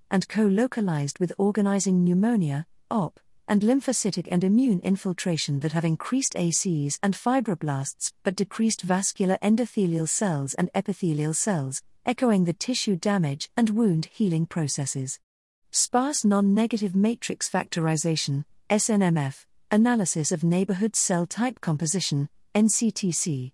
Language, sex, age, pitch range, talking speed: English, female, 50-69, 160-210 Hz, 115 wpm